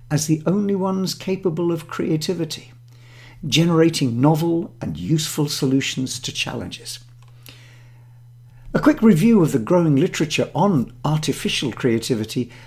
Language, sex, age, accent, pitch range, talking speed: English, male, 50-69, British, 125-185 Hz, 115 wpm